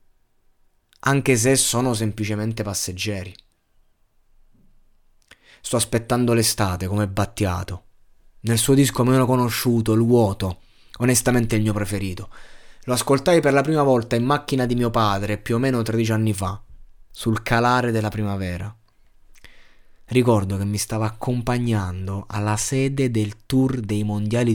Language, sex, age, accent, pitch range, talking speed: Italian, male, 20-39, native, 105-135 Hz, 130 wpm